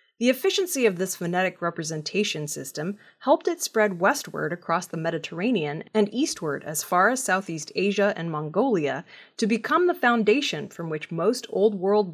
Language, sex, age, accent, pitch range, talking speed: English, female, 20-39, American, 175-245 Hz, 160 wpm